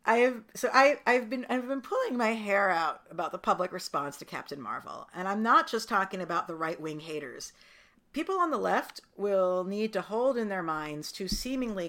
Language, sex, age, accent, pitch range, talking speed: English, female, 50-69, American, 165-235 Hz, 205 wpm